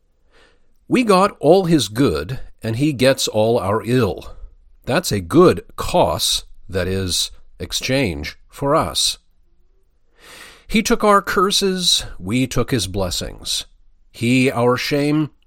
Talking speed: 120 wpm